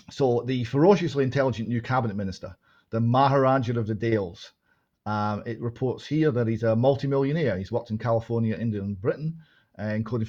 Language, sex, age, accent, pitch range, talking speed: English, male, 40-59, British, 110-140 Hz, 165 wpm